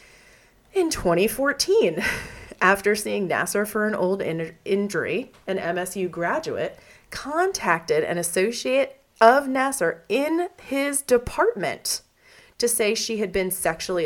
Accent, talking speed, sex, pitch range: American, 115 wpm, female, 175-255 Hz